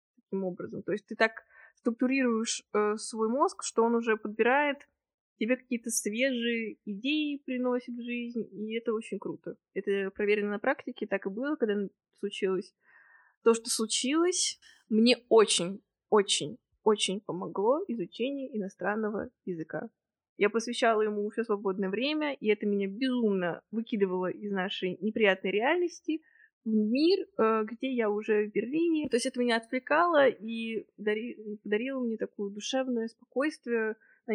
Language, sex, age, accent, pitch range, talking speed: Russian, female, 20-39, native, 205-255 Hz, 135 wpm